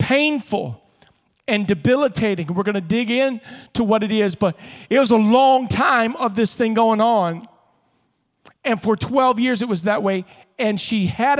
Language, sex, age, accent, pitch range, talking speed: English, male, 40-59, American, 180-225 Hz, 180 wpm